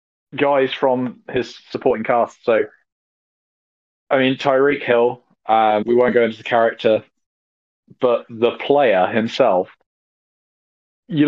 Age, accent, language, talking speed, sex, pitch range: 20-39, British, English, 115 wpm, male, 100-115 Hz